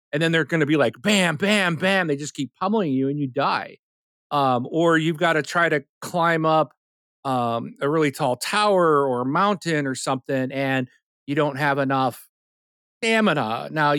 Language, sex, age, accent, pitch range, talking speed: English, male, 40-59, American, 120-160 Hz, 190 wpm